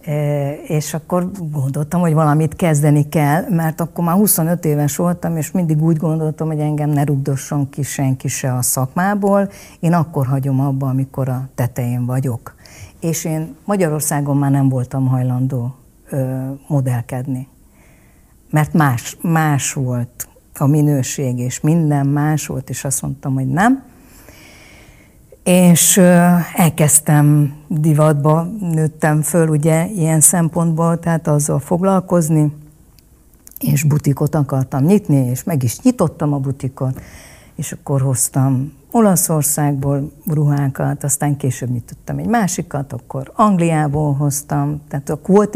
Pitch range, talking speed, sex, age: 135-165 Hz, 125 wpm, female, 60-79